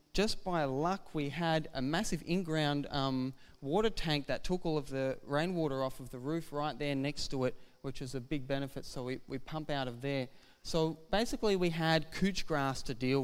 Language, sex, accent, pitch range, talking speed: English, male, Australian, 135-160 Hz, 210 wpm